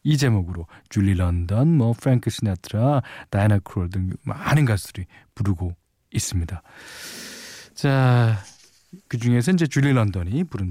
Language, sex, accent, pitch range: Korean, male, native, 105-155 Hz